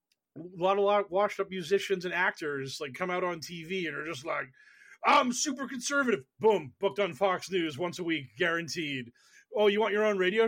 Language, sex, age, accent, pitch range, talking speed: English, male, 30-49, American, 155-200 Hz, 220 wpm